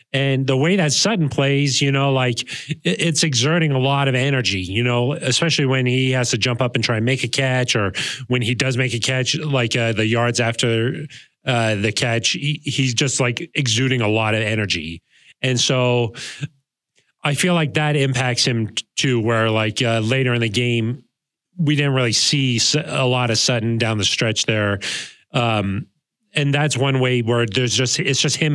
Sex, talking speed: male, 195 wpm